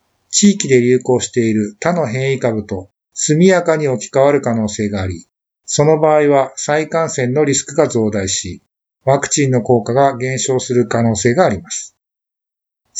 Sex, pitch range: male, 115-155 Hz